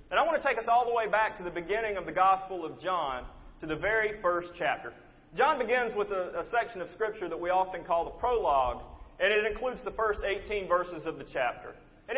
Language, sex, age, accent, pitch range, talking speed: English, male, 30-49, American, 180-255 Hz, 235 wpm